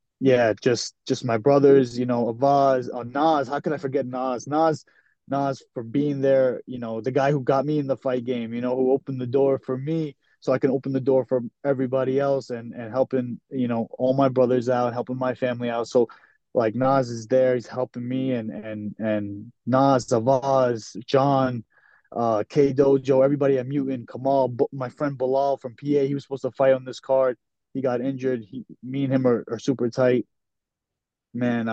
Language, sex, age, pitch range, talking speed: English, male, 20-39, 120-135 Hz, 200 wpm